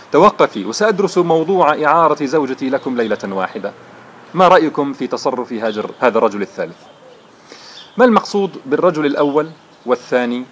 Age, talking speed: 40-59, 115 wpm